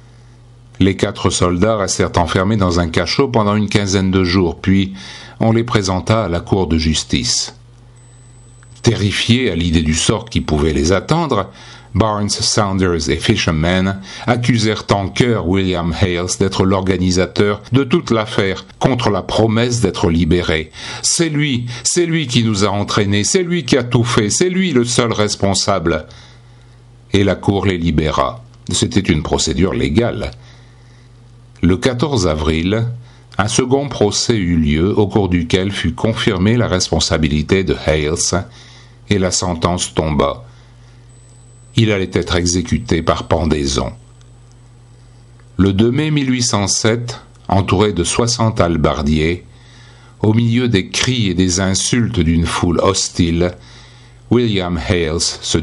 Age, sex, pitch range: 60-79, male, 90-120 Hz